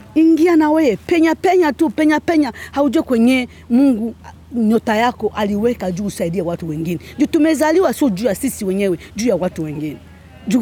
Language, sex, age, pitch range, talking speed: Swahili, female, 40-59, 215-315 Hz, 165 wpm